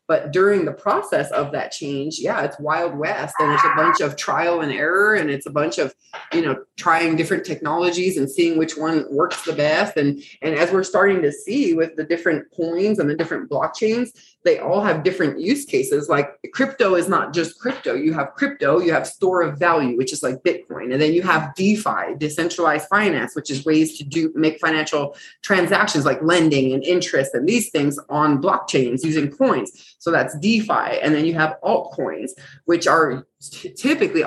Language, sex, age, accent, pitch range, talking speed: English, female, 30-49, American, 155-200 Hz, 195 wpm